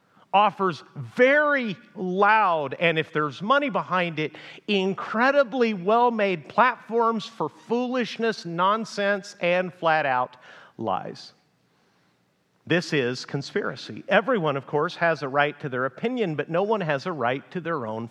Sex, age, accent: male, 50-69, American